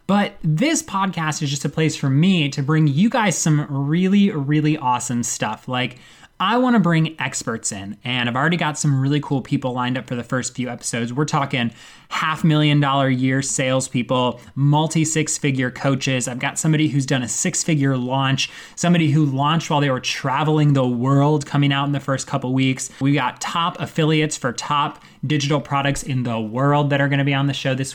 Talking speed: 210 wpm